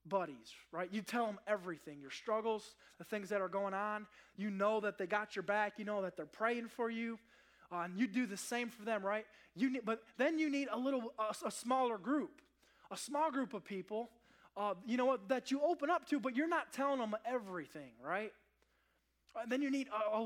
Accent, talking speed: American, 220 wpm